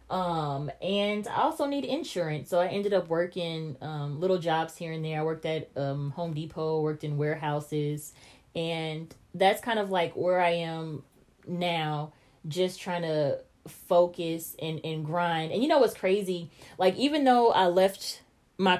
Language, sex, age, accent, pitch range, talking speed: English, female, 20-39, American, 160-185 Hz, 170 wpm